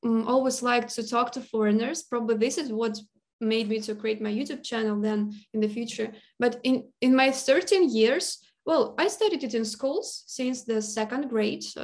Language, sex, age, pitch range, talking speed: English, female, 20-39, 215-255 Hz, 195 wpm